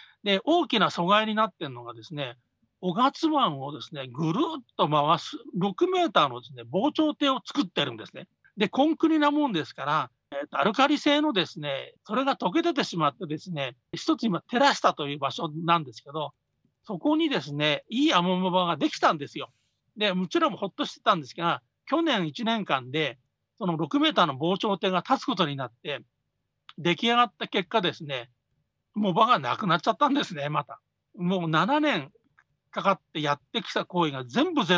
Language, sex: Japanese, male